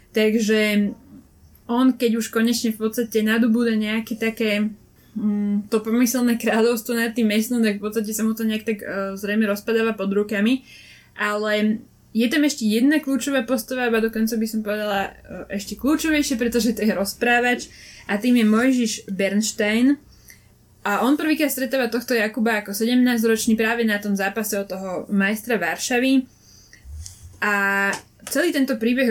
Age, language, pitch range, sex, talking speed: 20-39, Slovak, 210-245 Hz, female, 150 wpm